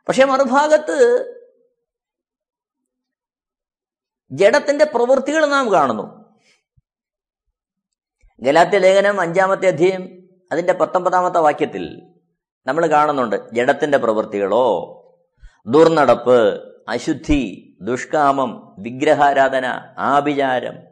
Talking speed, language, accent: 60 wpm, Malayalam, native